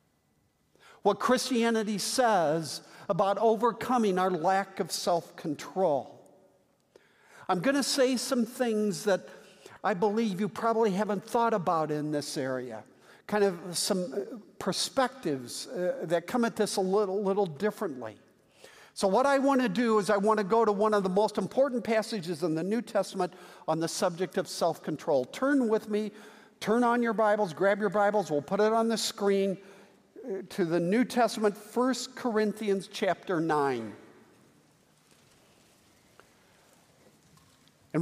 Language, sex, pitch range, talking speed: English, male, 180-225 Hz, 145 wpm